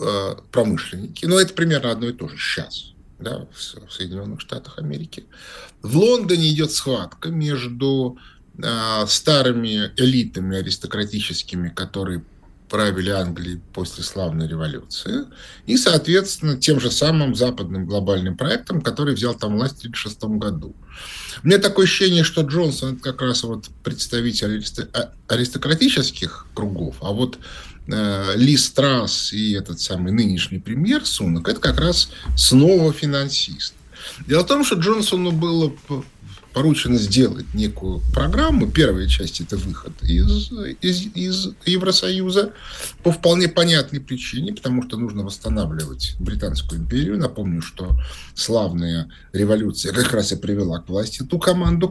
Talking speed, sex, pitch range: 130 wpm, male, 95-155 Hz